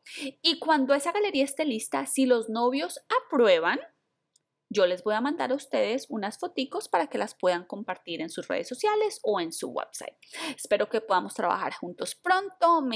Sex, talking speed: female, 180 wpm